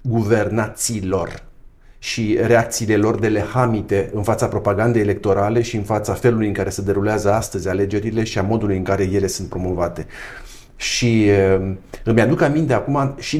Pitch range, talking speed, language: 105-130 Hz, 150 wpm, Romanian